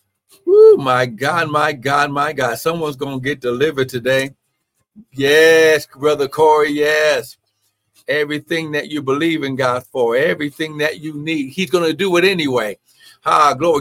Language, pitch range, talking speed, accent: English, 125-170 Hz, 155 wpm, American